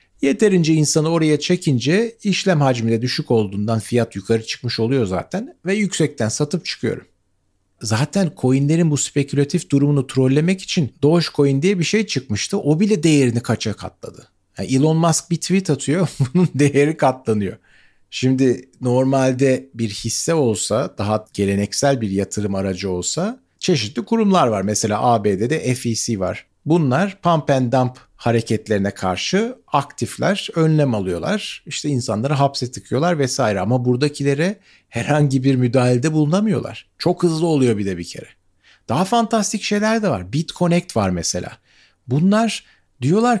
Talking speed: 135 wpm